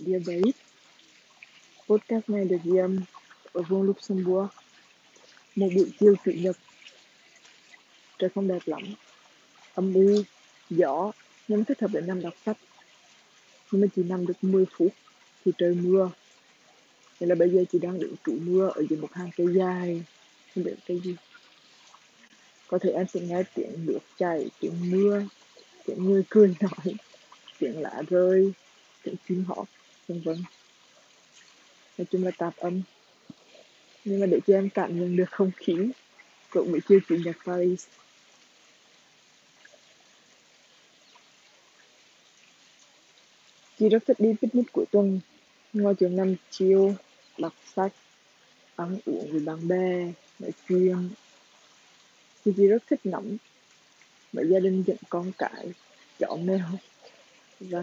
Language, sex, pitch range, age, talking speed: Vietnamese, female, 180-205 Hz, 20-39, 135 wpm